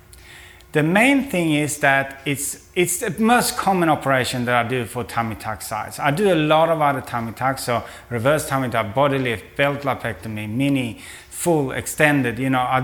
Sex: male